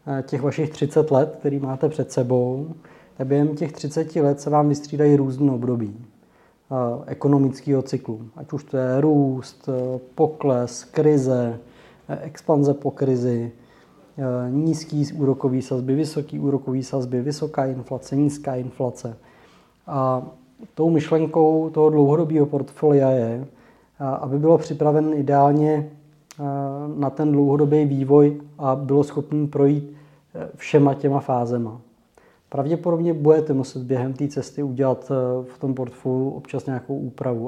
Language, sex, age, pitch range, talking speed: Czech, male, 20-39, 130-145 Hz, 120 wpm